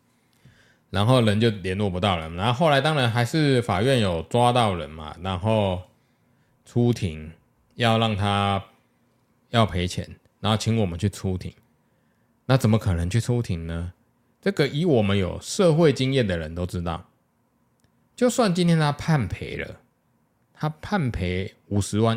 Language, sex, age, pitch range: Chinese, male, 20-39, 95-140 Hz